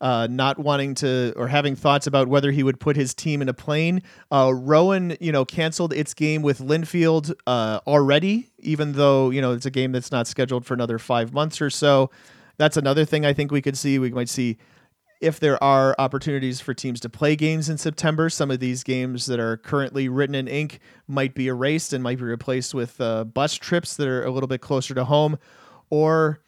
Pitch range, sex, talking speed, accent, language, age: 125-150 Hz, male, 220 wpm, American, English, 40-59